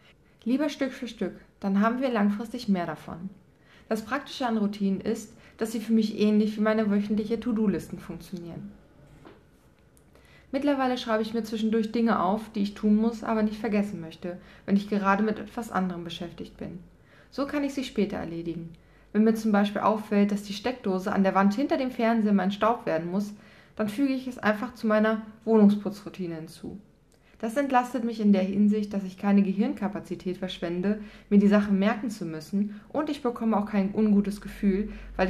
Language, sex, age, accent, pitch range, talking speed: German, female, 20-39, German, 190-225 Hz, 180 wpm